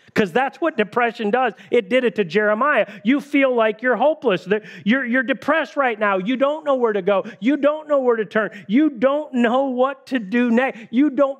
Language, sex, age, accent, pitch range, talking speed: English, male, 50-69, American, 190-280 Hz, 215 wpm